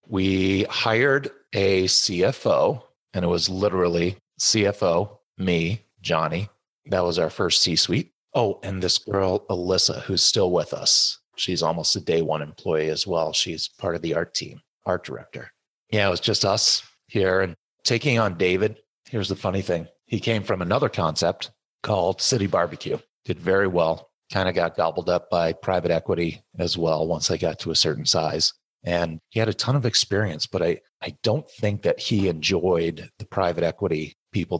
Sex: male